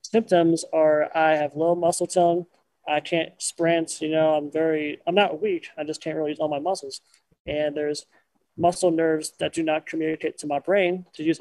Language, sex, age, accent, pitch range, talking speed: English, male, 20-39, American, 150-175 Hz, 200 wpm